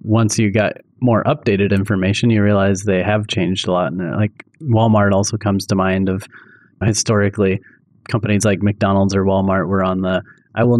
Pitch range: 100-115 Hz